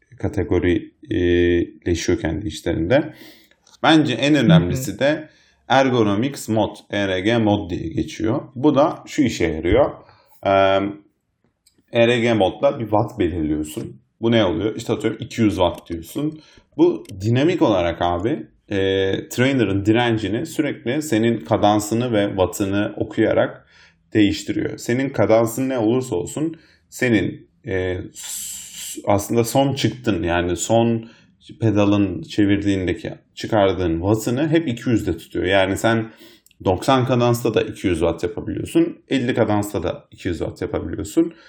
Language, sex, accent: Turkish, male, native